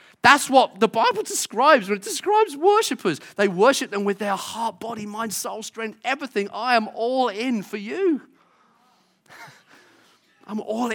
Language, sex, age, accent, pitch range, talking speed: English, male, 40-59, British, 185-230 Hz, 155 wpm